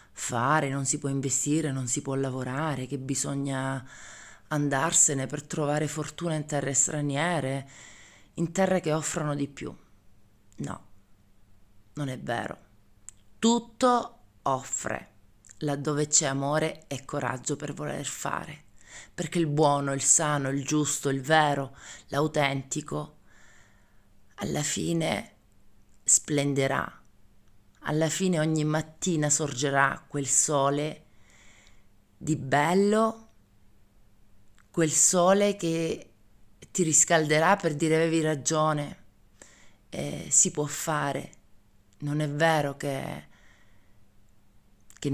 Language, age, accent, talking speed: Italian, 30-49, native, 105 wpm